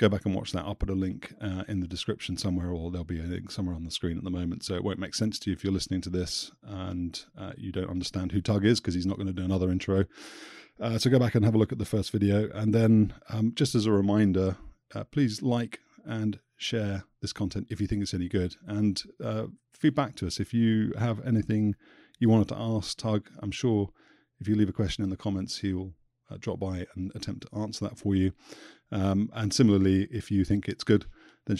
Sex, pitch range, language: male, 95-110 Hz, English